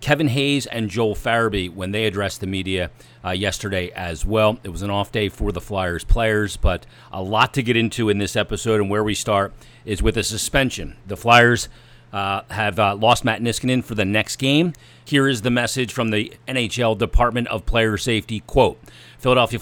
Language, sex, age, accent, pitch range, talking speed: English, male, 40-59, American, 100-115 Hz, 200 wpm